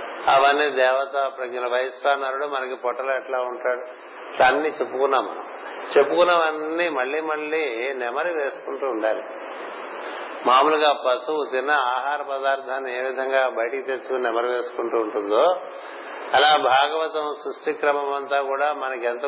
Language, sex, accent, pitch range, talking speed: Telugu, male, native, 125-150 Hz, 105 wpm